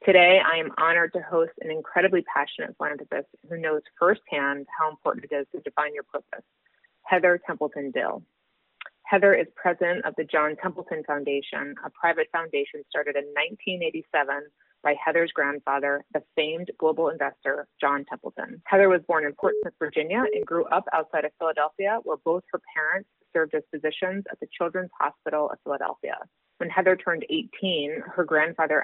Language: English